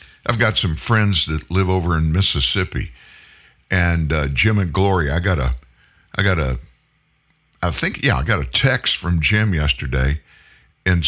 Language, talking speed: English, 170 wpm